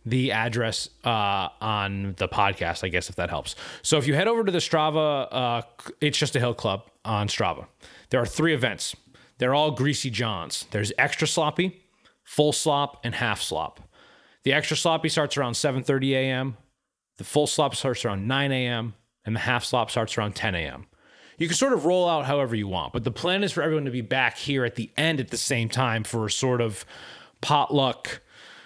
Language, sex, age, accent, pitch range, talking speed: English, male, 30-49, American, 110-145 Hz, 200 wpm